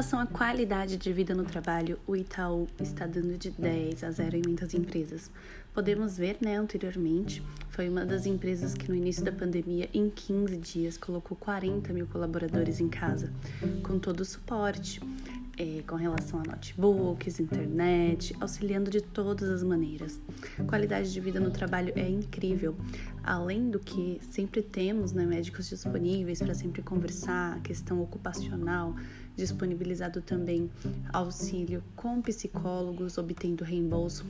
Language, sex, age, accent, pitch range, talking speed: Portuguese, female, 20-39, Brazilian, 170-195 Hz, 150 wpm